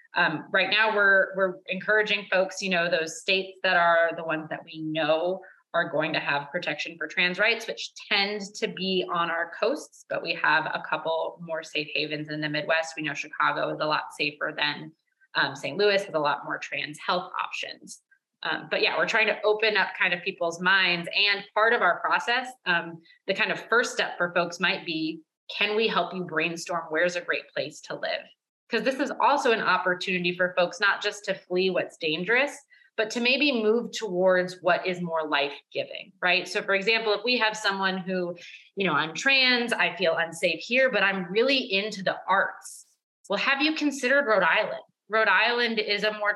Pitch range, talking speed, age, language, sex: 170-215 Hz, 205 wpm, 20-39, English, female